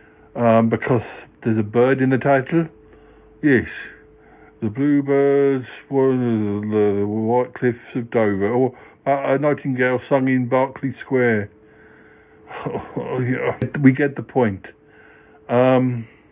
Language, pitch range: English, 110-140 Hz